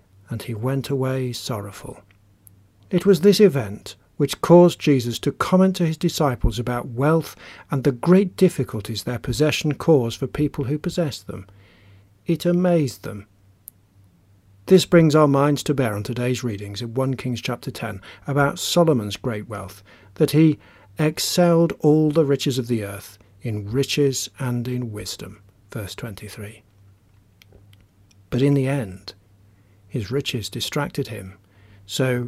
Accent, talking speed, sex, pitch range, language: British, 145 wpm, male, 100-150 Hz, English